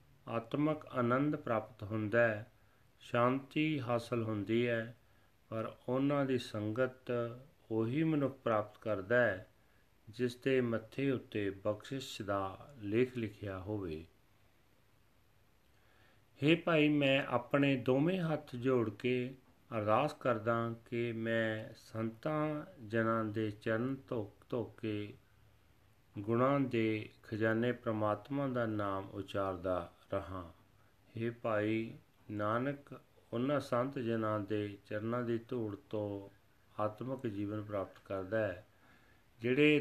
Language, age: Punjabi, 40-59